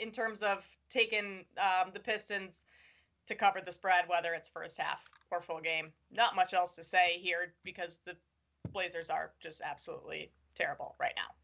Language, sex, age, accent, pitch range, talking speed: English, female, 20-39, American, 190-250 Hz, 175 wpm